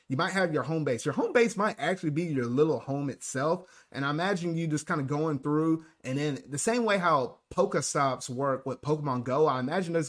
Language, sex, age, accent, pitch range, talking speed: English, male, 30-49, American, 130-165 Hz, 225 wpm